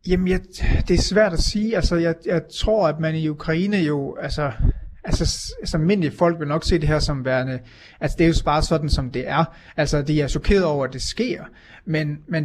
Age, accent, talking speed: 30-49, native, 220 wpm